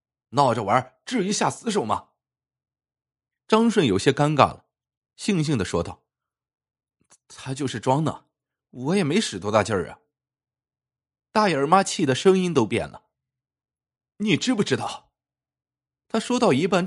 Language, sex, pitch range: Chinese, male, 130-195 Hz